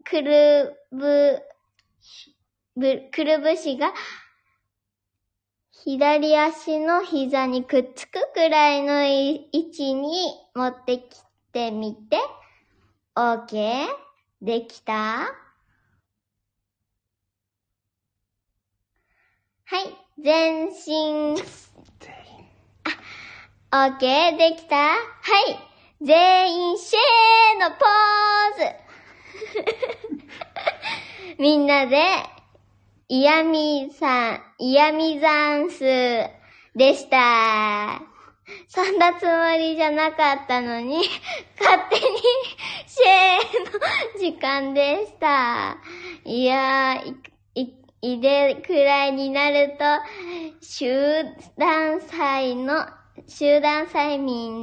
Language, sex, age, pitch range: Japanese, male, 20-39, 250-325 Hz